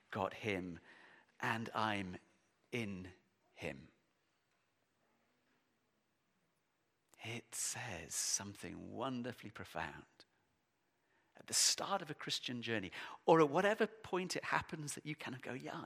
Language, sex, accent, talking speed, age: English, male, British, 115 wpm, 40-59